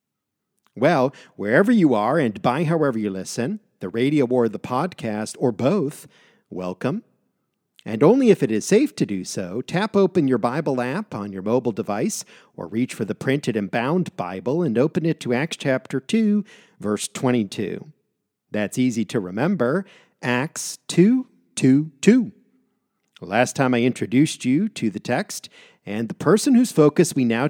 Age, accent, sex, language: 50-69, American, male, English